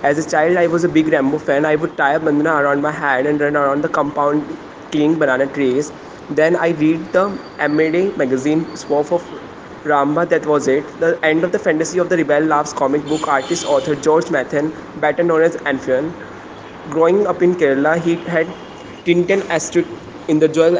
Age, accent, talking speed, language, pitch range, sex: 20-39, Indian, 195 wpm, English, 150-170 Hz, male